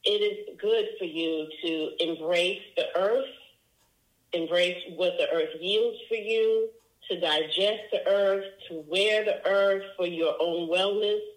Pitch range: 170-200 Hz